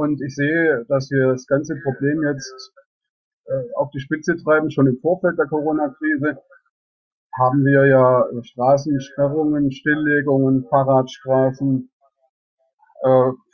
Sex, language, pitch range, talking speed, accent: male, German, 135-160 Hz, 125 wpm, German